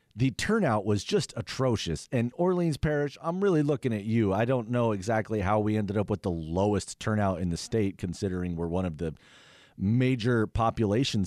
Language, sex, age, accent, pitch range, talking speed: English, male, 40-59, American, 100-145 Hz, 185 wpm